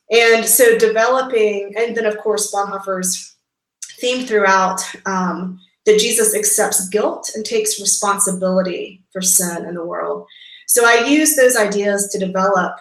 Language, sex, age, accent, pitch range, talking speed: English, female, 30-49, American, 190-225 Hz, 140 wpm